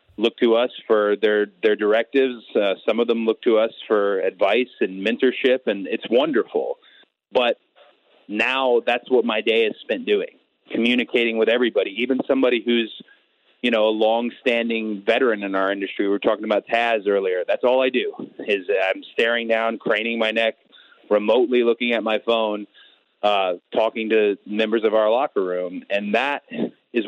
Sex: male